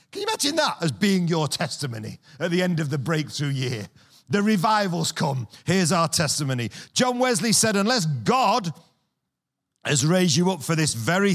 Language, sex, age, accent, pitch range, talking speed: English, male, 40-59, British, 145-200 Hz, 165 wpm